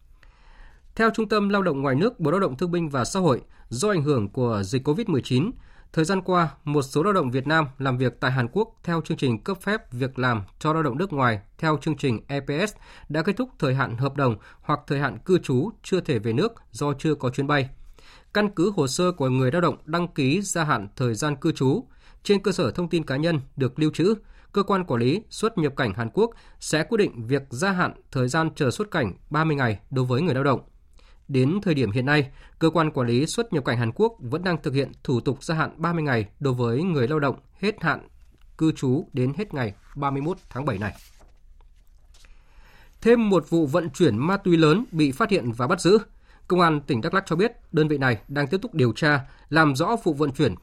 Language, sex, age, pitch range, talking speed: Vietnamese, male, 20-39, 125-170 Hz, 235 wpm